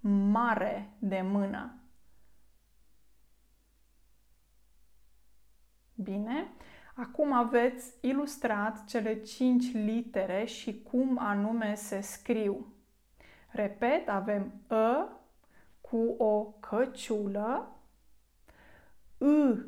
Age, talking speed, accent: 20-39, 65 wpm, native